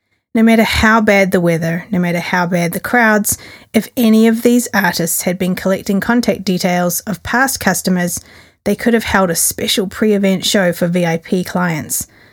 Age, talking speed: 30-49, 175 wpm